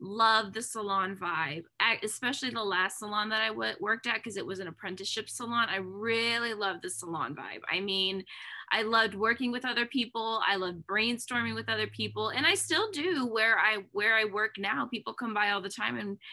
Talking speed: 200 wpm